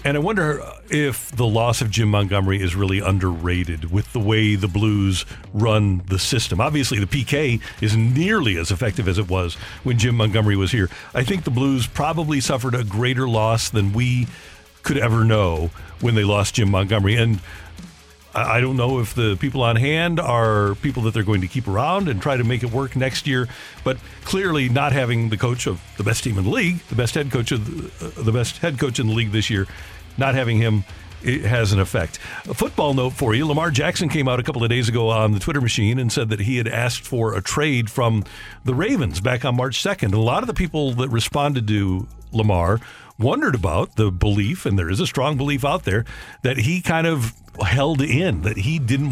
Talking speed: 210 wpm